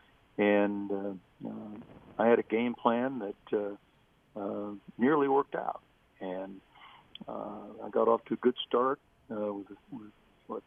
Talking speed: 150 wpm